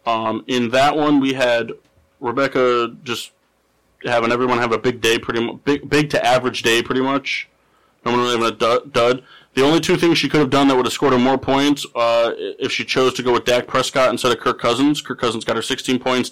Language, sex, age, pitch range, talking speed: English, male, 30-49, 115-135 Hz, 230 wpm